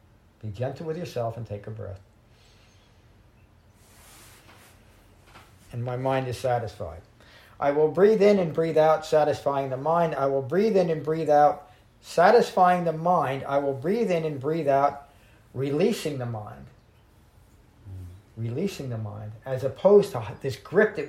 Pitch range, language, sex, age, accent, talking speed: 105-155 Hz, English, male, 50-69, American, 150 wpm